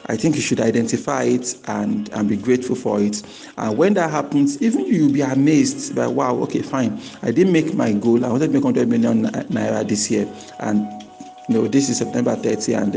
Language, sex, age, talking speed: English, male, 50-69, 215 wpm